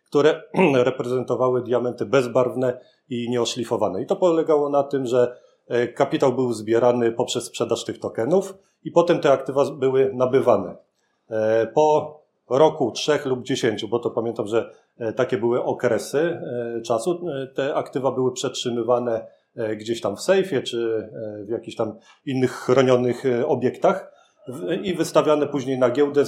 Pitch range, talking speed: 120-150 Hz, 130 wpm